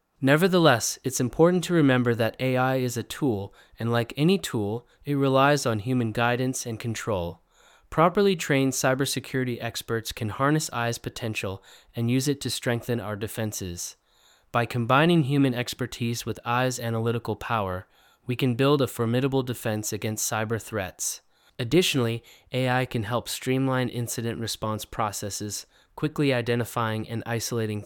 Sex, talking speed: male, 140 wpm